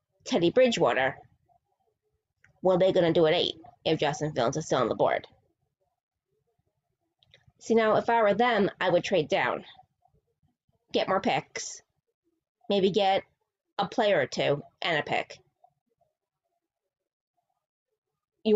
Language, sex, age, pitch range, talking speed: English, female, 20-39, 160-225 Hz, 130 wpm